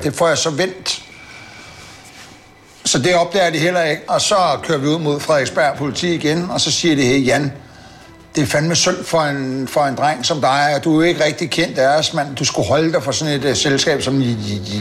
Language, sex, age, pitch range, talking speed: Danish, male, 60-79, 130-170 Hz, 240 wpm